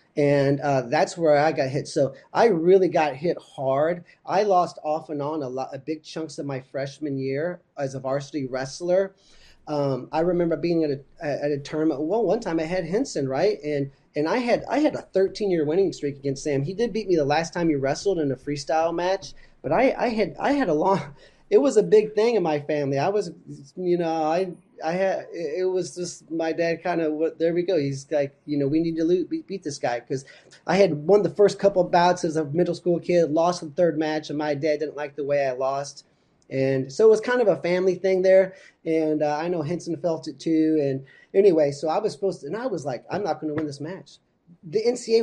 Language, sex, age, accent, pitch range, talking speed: English, male, 30-49, American, 145-185 Hz, 245 wpm